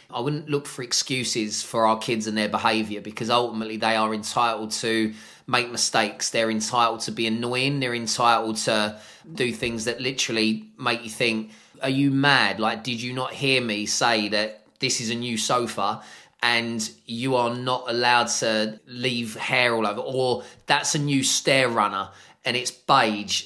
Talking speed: 175 wpm